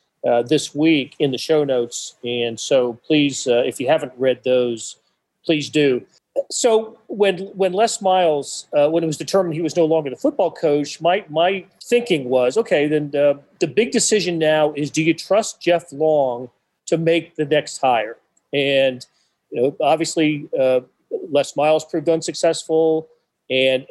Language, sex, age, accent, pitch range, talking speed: English, male, 40-59, American, 140-165 Hz, 170 wpm